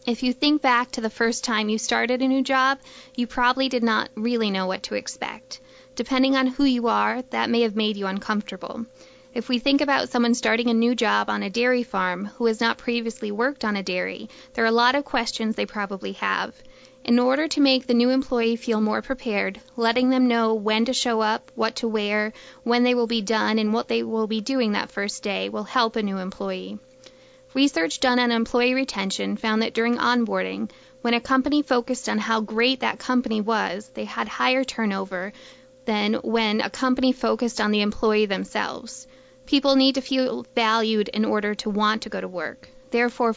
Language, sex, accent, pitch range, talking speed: English, female, American, 215-260 Hz, 205 wpm